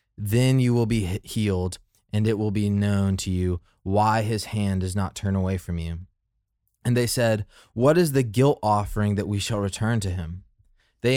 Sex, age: male, 20-39